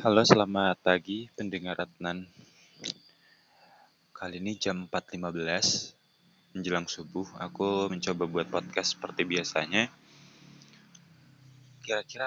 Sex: male